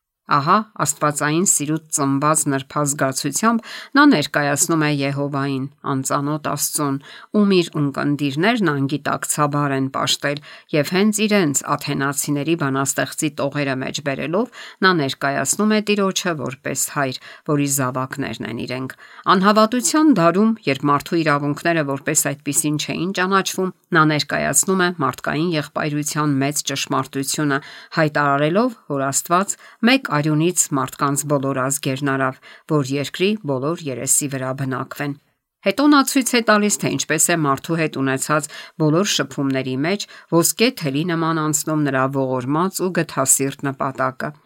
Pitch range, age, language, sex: 140-170 Hz, 50-69, English, female